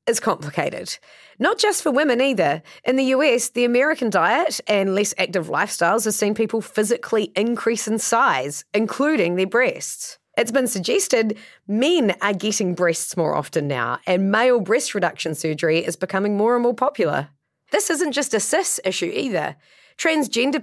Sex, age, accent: female, 30-49, Australian